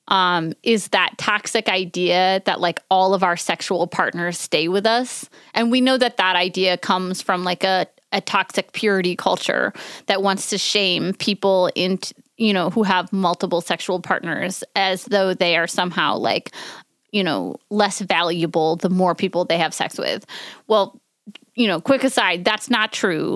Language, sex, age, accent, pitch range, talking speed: English, female, 20-39, American, 185-225 Hz, 170 wpm